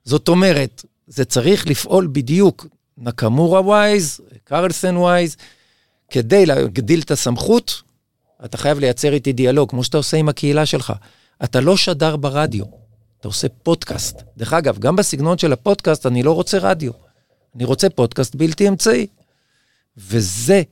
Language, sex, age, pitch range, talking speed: Hebrew, male, 50-69, 120-160 Hz, 140 wpm